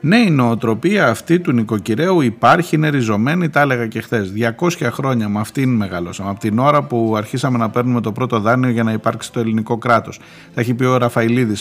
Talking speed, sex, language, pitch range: 200 wpm, male, Greek, 100-130 Hz